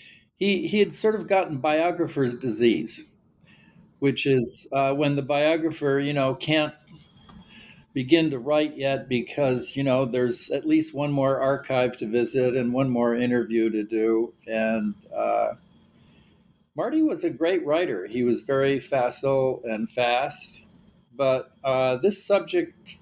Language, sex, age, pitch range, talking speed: English, male, 50-69, 120-155 Hz, 145 wpm